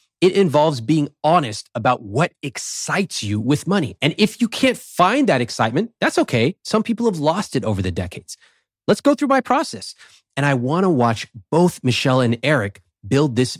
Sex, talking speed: male, 190 wpm